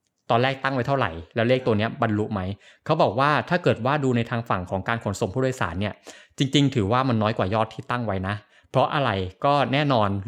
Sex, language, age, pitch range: male, Thai, 20-39, 105-135 Hz